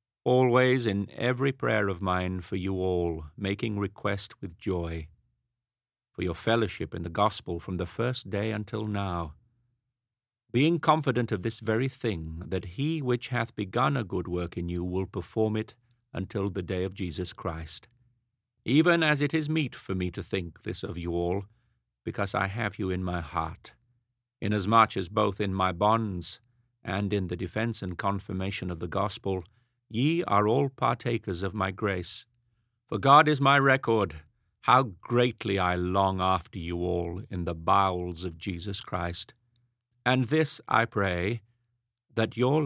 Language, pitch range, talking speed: English, 95-120 Hz, 165 wpm